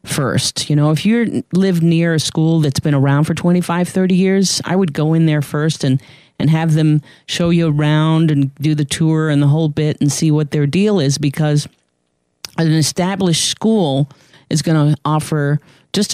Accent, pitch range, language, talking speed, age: American, 140-165 Hz, English, 195 wpm, 40-59